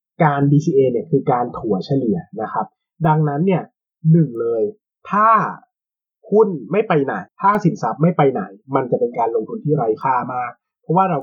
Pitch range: 145-205 Hz